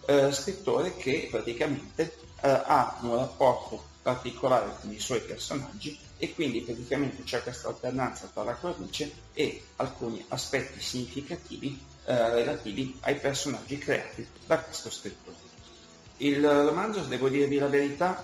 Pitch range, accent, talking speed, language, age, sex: 115-140 Hz, native, 130 wpm, Italian, 40-59, male